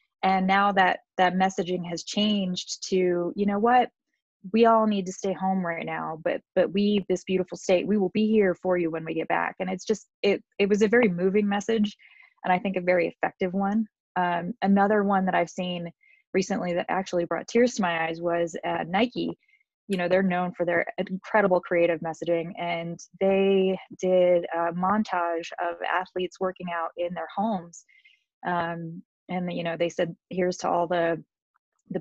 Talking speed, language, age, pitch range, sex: 190 wpm, English, 20-39, 165-195 Hz, female